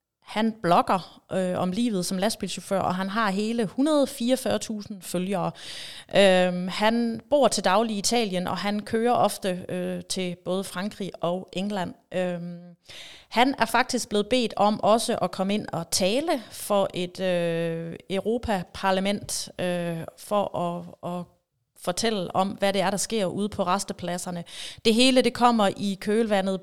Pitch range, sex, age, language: 175-205 Hz, female, 30-49, Danish